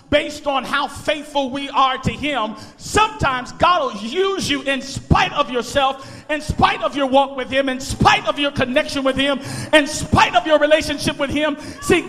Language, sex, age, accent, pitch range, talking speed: English, male, 40-59, American, 295-390 Hz, 195 wpm